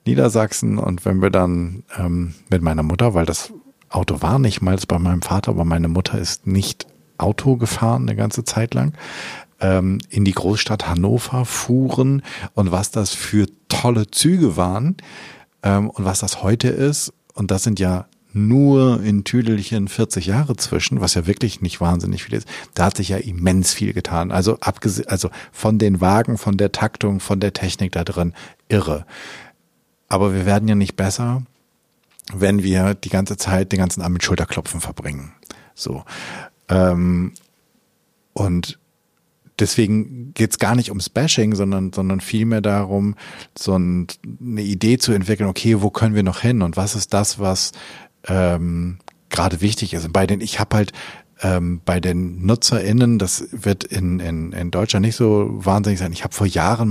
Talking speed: 170 wpm